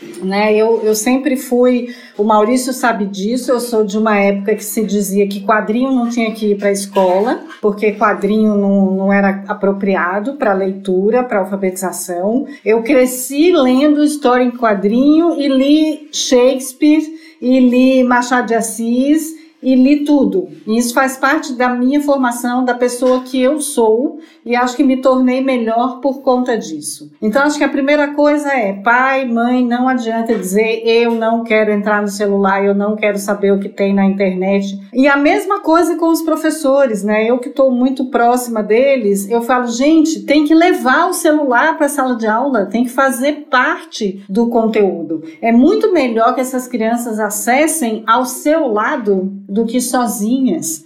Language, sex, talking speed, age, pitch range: Portuguese, female, 170 wpm, 50-69, 215-275 Hz